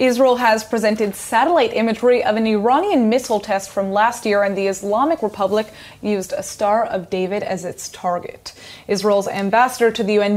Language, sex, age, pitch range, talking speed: English, female, 20-39, 195-245 Hz, 175 wpm